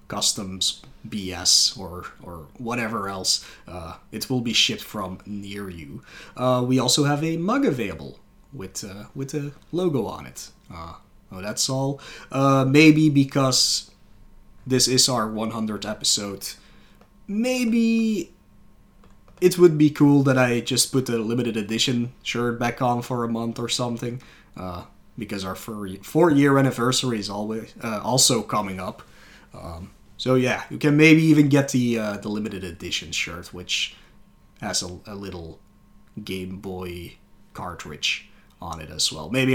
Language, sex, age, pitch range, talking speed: English, male, 30-49, 95-135 Hz, 150 wpm